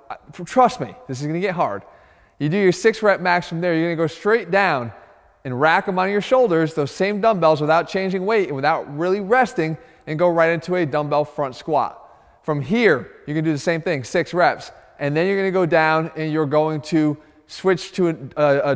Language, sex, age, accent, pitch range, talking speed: English, male, 20-39, American, 150-190 Hz, 230 wpm